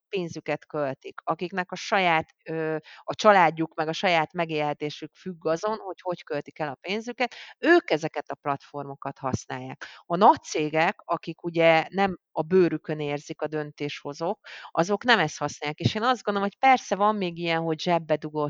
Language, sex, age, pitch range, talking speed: Hungarian, female, 30-49, 145-180 Hz, 165 wpm